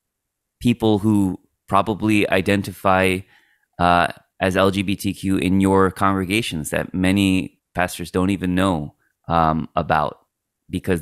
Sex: male